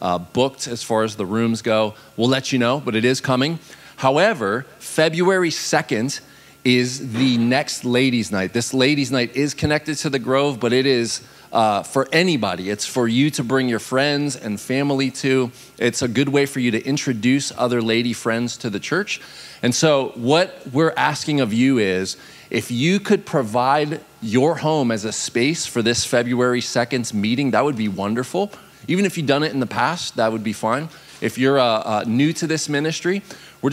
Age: 30-49